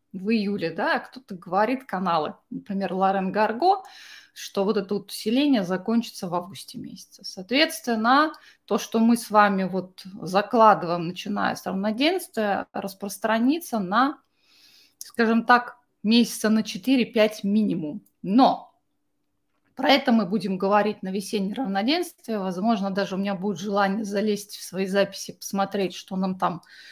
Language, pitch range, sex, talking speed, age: Russian, 195-240 Hz, female, 130 wpm, 20-39